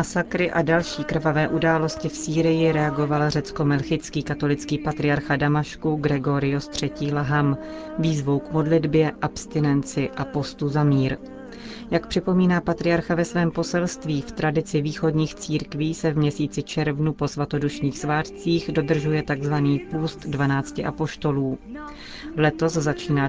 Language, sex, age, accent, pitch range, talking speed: Czech, female, 30-49, native, 145-165 Hz, 120 wpm